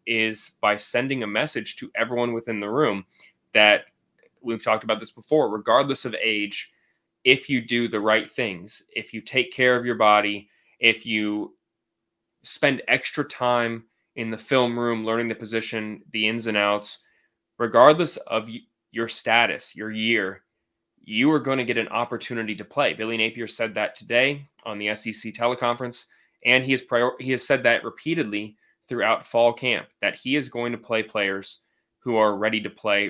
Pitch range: 110-125 Hz